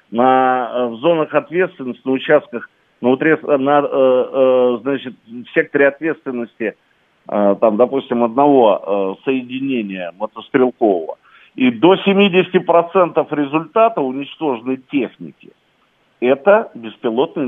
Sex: male